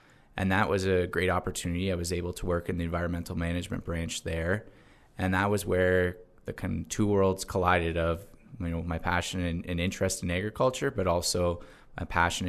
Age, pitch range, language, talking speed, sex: 20-39, 85-95 Hz, English, 185 wpm, male